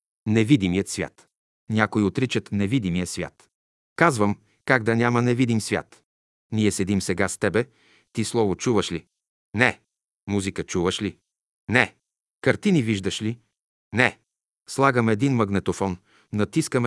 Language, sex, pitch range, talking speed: Bulgarian, male, 95-125 Hz, 120 wpm